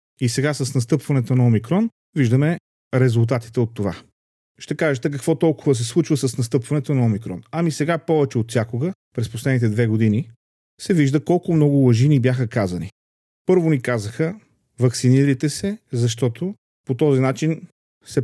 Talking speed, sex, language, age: 155 wpm, male, Bulgarian, 40-59